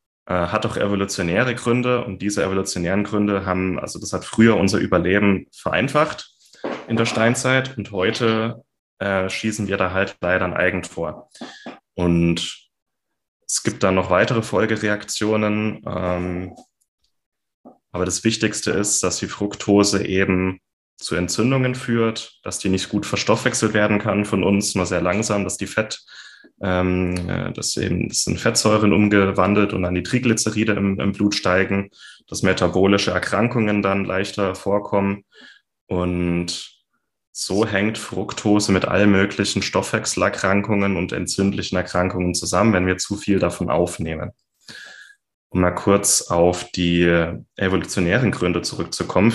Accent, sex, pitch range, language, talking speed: German, male, 90-110 Hz, German, 130 wpm